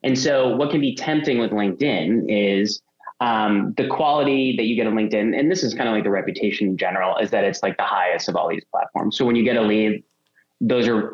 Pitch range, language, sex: 105-125 Hz, English, male